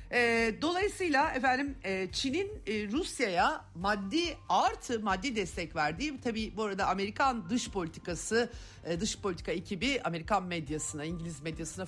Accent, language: native, Turkish